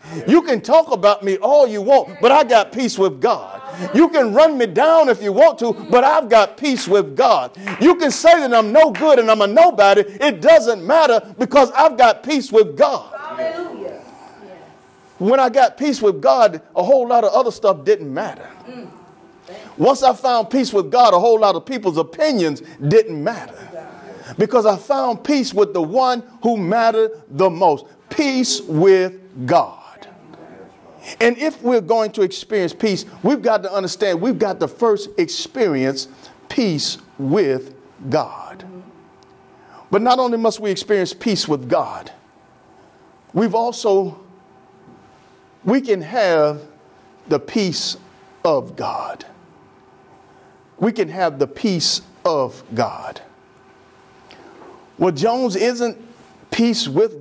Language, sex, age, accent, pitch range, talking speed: English, male, 50-69, American, 190-265 Hz, 145 wpm